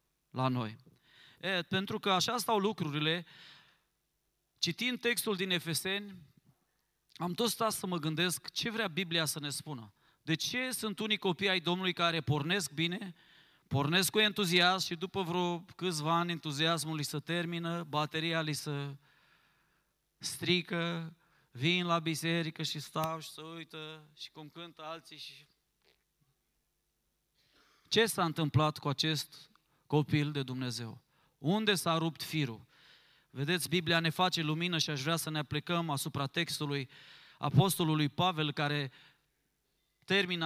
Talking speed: 135 wpm